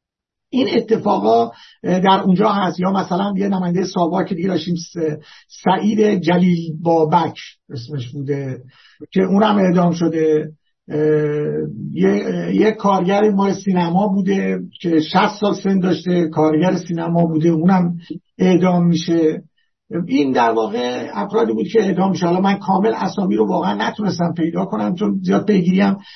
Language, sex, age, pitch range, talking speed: Persian, male, 50-69, 150-190 Hz, 130 wpm